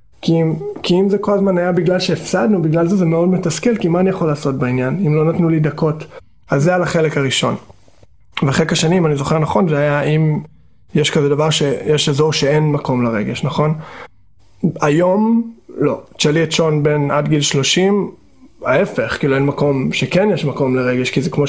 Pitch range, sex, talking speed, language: 145-175 Hz, male, 190 wpm, Hebrew